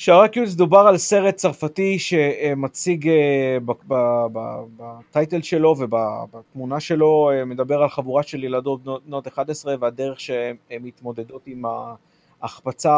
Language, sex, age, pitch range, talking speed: Hebrew, male, 30-49, 125-150 Hz, 100 wpm